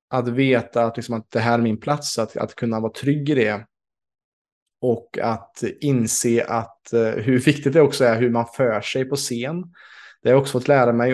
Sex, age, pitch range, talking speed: male, 20-39, 115-135 Hz, 195 wpm